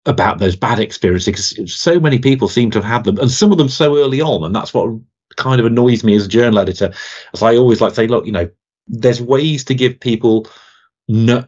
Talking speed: 240 wpm